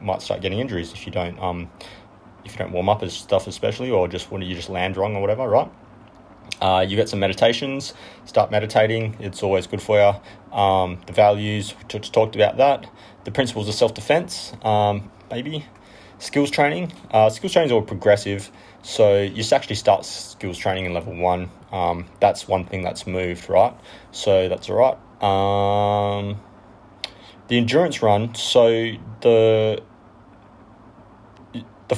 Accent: Australian